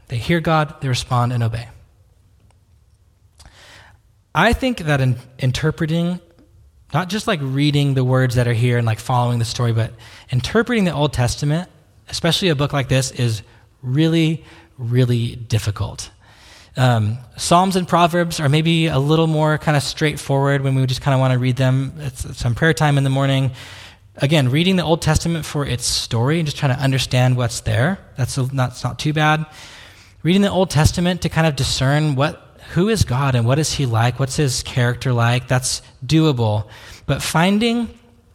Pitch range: 115-150 Hz